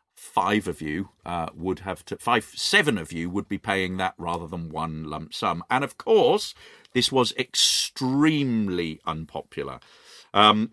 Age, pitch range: 40-59, 100-125 Hz